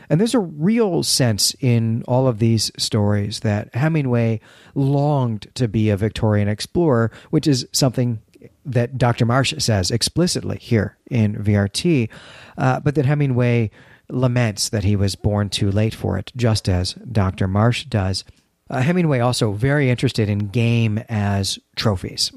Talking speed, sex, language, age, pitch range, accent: 150 wpm, male, English, 40-59, 105-130 Hz, American